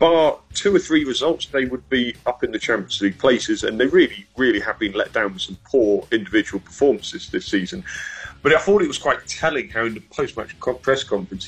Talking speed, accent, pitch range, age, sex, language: 225 wpm, British, 100-135 Hz, 40-59, male, English